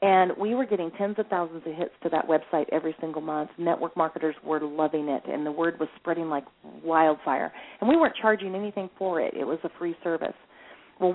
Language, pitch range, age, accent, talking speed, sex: English, 160-200 Hz, 40-59, American, 215 wpm, female